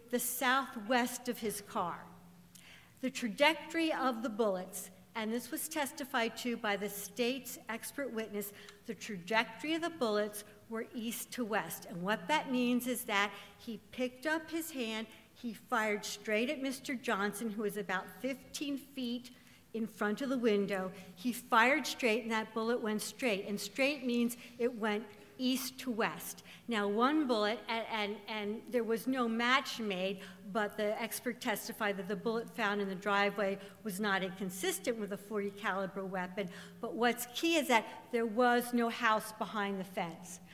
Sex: female